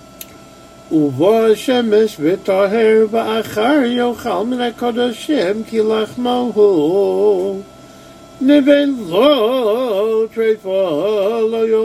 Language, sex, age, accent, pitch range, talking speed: English, male, 50-69, American, 200-245 Hz, 90 wpm